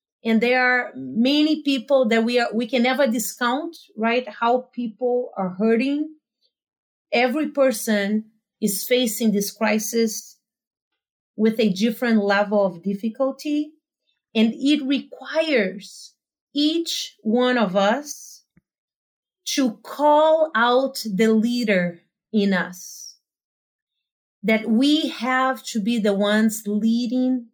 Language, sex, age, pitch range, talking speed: English, female, 30-49, 215-255 Hz, 110 wpm